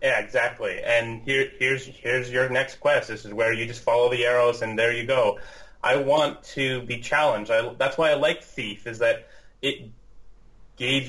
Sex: male